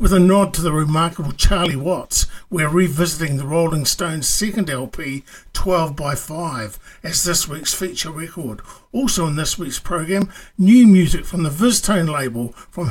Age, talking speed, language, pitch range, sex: 50-69, 155 wpm, English, 155-195 Hz, male